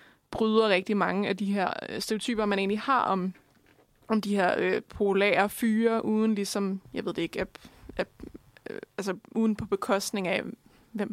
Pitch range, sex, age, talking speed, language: 190-220 Hz, female, 20-39, 175 wpm, Danish